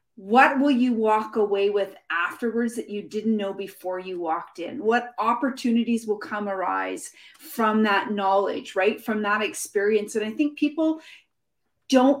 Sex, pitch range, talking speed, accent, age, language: female, 210-265 Hz, 155 wpm, American, 30-49, English